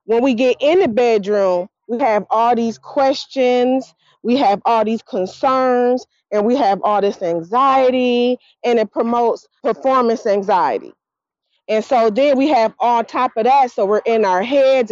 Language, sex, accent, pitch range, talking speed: English, female, American, 215-270 Hz, 165 wpm